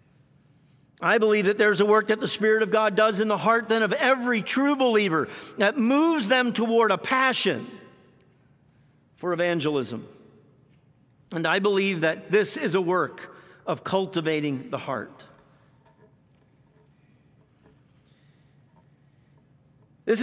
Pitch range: 170-230 Hz